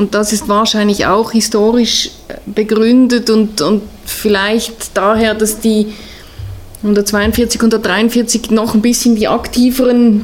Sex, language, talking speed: female, German, 125 wpm